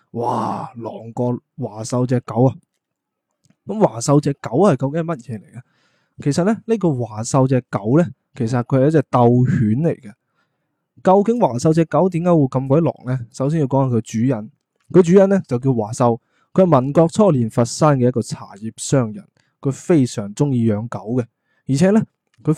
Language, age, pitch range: Chinese, 20-39, 120-155 Hz